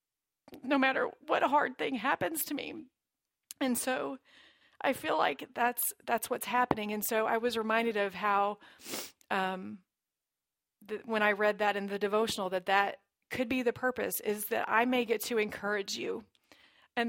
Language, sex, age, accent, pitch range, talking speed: English, female, 30-49, American, 205-245 Hz, 170 wpm